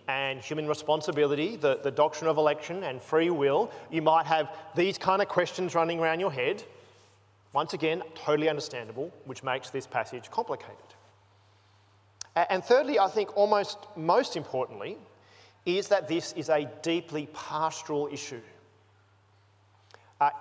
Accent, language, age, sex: Australian, English, 30-49, male